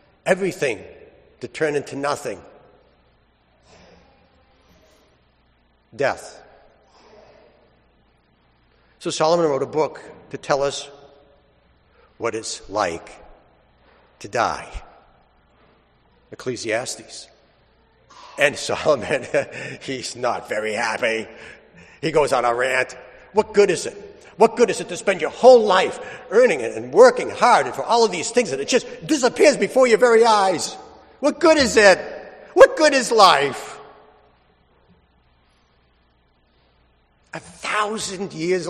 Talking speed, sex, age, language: 115 wpm, male, 60-79, English